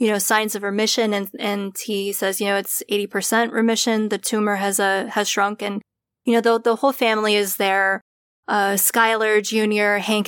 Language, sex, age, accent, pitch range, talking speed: English, female, 20-39, American, 210-245 Hz, 200 wpm